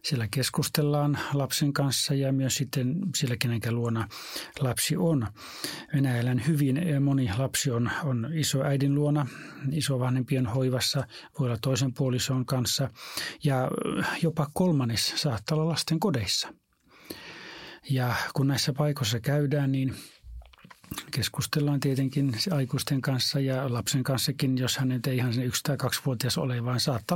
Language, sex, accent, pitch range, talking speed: Finnish, male, native, 125-145 Hz, 135 wpm